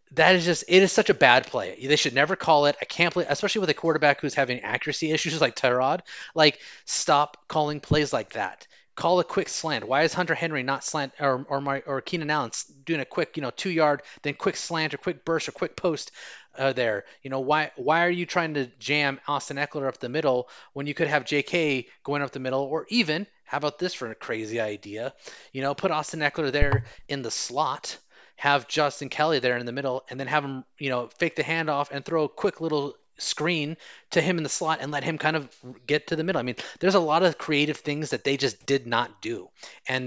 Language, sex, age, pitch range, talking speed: English, male, 30-49, 135-160 Hz, 235 wpm